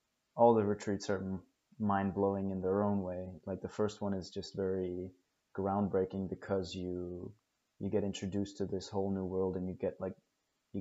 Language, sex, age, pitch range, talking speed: English, male, 20-39, 95-100 Hz, 185 wpm